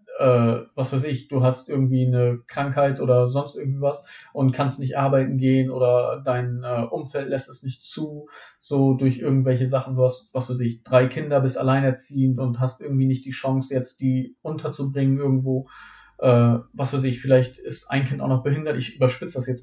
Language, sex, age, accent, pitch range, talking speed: German, male, 40-59, German, 125-135 Hz, 195 wpm